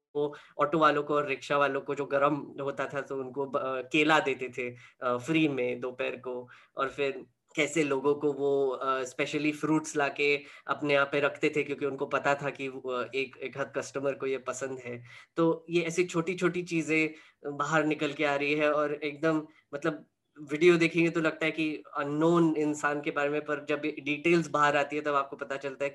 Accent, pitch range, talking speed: native, 140-160 Hz, 210 wpm